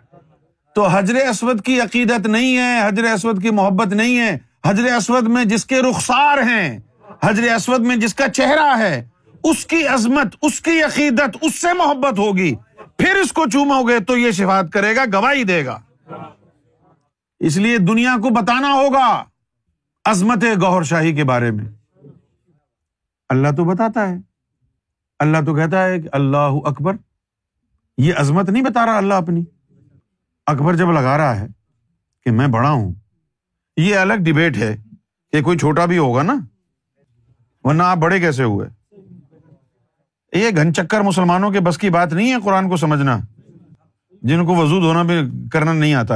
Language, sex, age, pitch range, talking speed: Urdu, male, 50-69, 140-220 Hz, 160 wpm